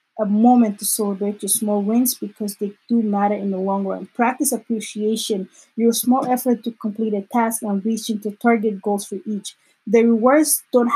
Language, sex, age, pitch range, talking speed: English, female, 20-39, 200-230 Hz, 185 wpm